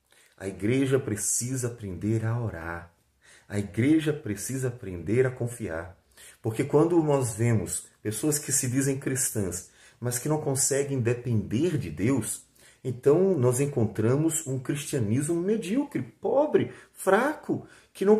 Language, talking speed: Portuguese, 125 wpm